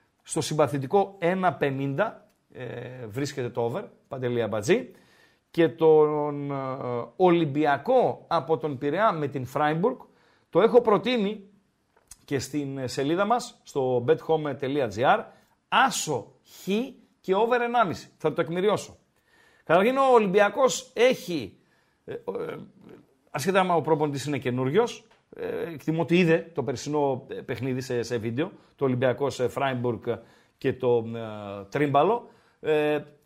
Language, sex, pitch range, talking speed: Greek, male, 140-225 Hz, 115 wpm